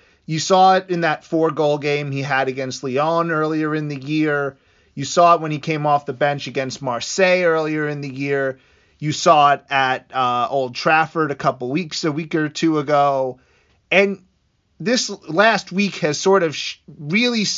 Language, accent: English, American